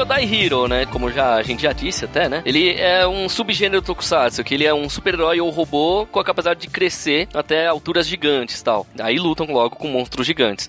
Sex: male